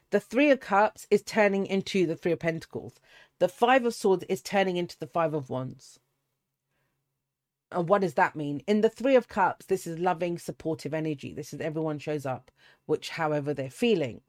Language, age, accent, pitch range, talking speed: English, 40-59, British, 140-190 Hz, 195 wpm